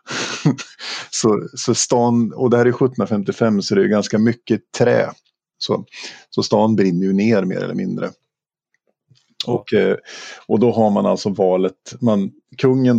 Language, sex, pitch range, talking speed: Swedish, male, 100-120 Hz, 150 wpm